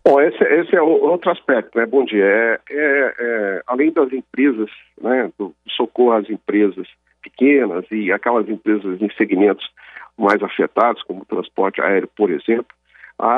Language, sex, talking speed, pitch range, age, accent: Portuguese, male, 150 wpm, 110-135 Hz, 50-69, Brazilian